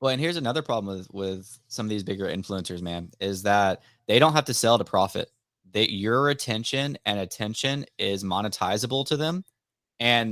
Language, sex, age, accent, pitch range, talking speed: English, male, 20-39, American, 100-125 Hz, 185 wpm